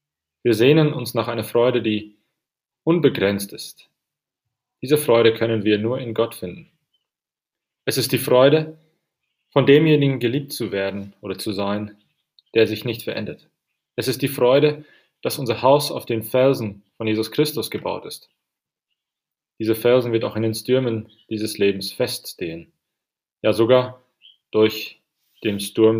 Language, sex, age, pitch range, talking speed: English, male, 30-49, 105-125 Hz, 145 wpm